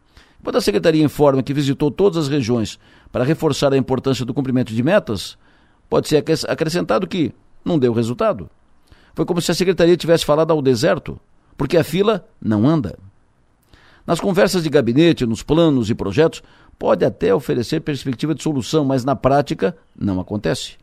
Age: 50-69